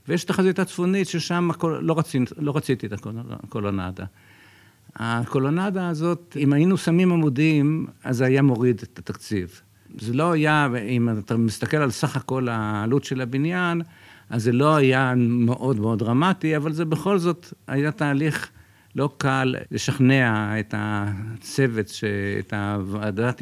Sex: male